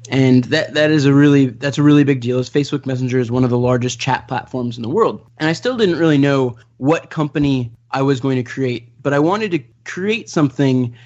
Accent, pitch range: American, 125-150 Hz